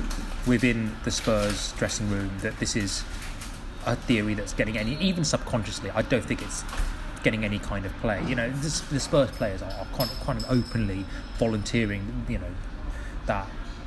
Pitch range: 90-120 Hz